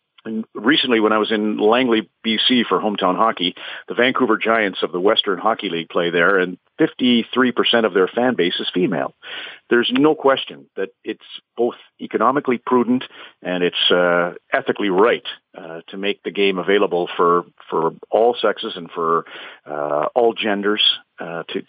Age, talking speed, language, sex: 50-69, 160 wpm, English, male